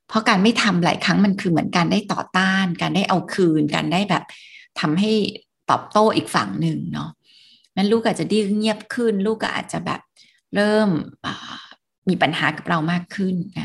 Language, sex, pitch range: Thai, female, 170-220 Hz